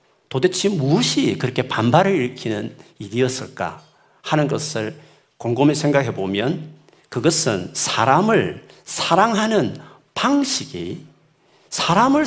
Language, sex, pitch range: Korean, male, 125-180 Hz